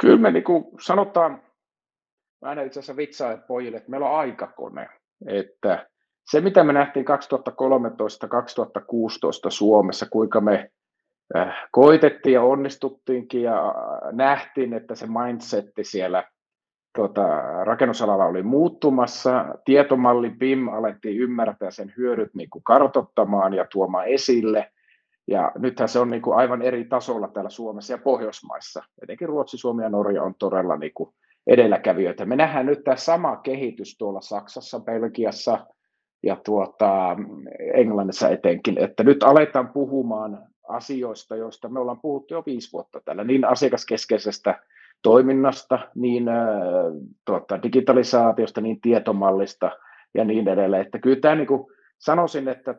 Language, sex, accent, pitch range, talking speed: Finnish, male, native, 115-140 Hz, 125 wpm